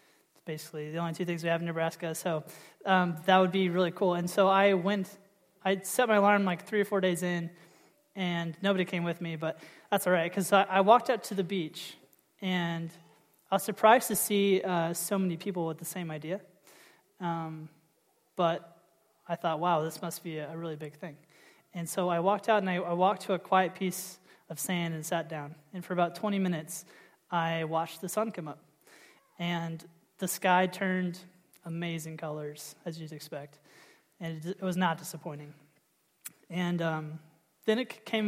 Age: 20-39